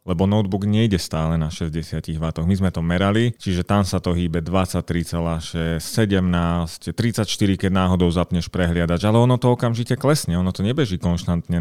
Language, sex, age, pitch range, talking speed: Slovak, male, 30-49, 90-105 Hz, 165 wpm